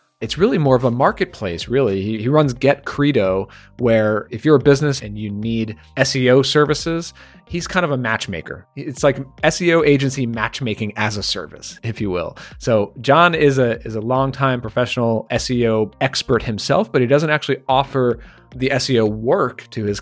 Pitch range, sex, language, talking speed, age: 110-135 Hz, male, English, 175 wpm, 30-49